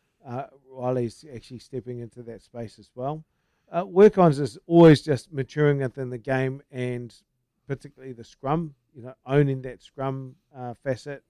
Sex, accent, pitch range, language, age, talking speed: male, Australian, 125-145 Hz, English, 50-69, 155 wpm